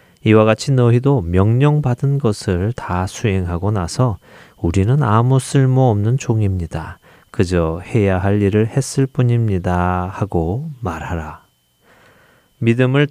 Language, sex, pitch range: Korean, male, 95-130 Hz